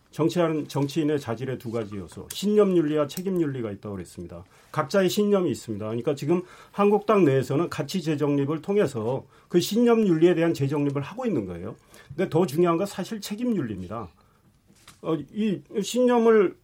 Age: 40-59